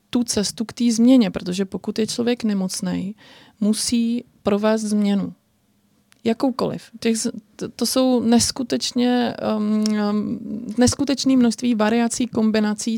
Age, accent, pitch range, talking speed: 20-39, native, 200-235 Hz, 100 wpm